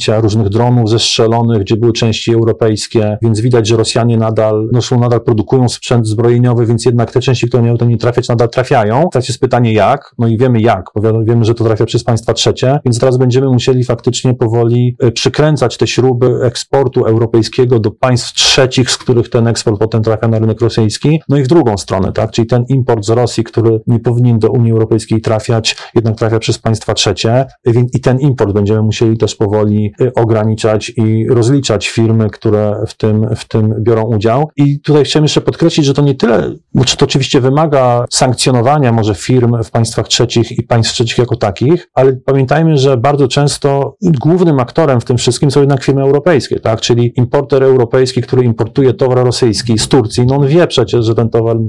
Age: 40-59